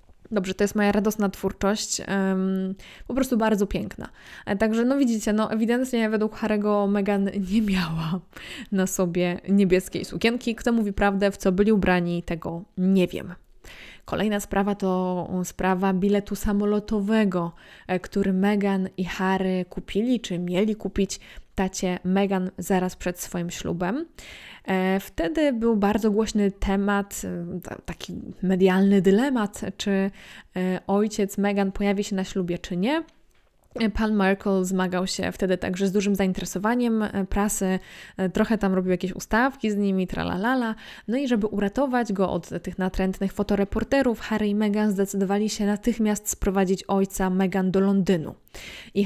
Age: 20-39